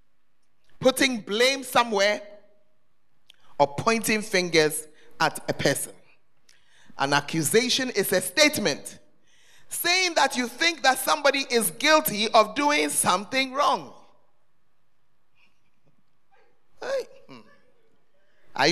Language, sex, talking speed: English, male, 85 wpm